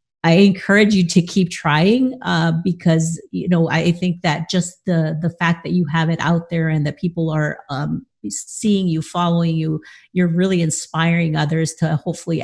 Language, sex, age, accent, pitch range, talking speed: English, female, 40-59, American, 160-180 Hz, 185 wpm